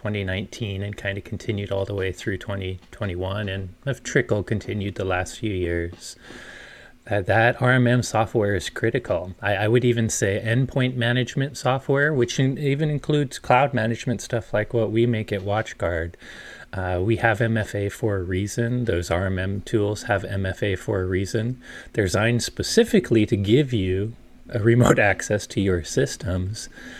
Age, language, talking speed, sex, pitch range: 30-49, English, 160 wpm, male, 95-115 Hz